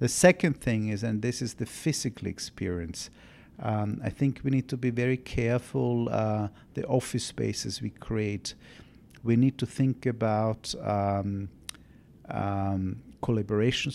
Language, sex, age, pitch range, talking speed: English, male, 50-69, 105-130 Hz, 140 wpm